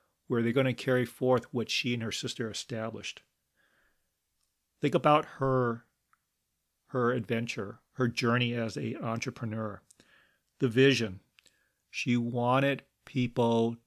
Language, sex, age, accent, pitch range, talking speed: English, male, 40-59, American, 115-135 Hz, 115 wpm